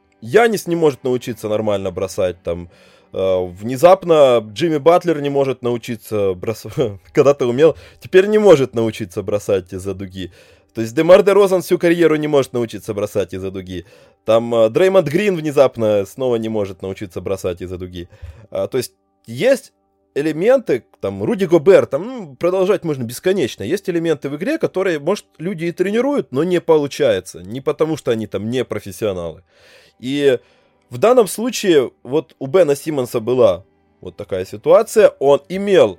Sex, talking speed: male, 160 wpm